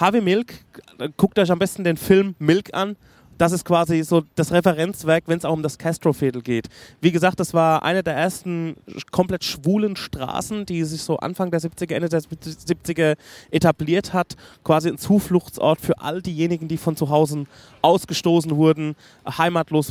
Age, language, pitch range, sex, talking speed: 30-49, German, 150-175 Hz, male, 175 wpm